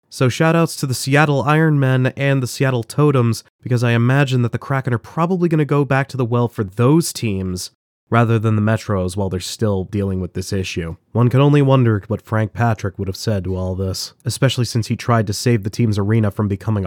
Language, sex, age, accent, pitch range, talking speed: English, male, 30-49, American, 100-140 Hz, 225 wpm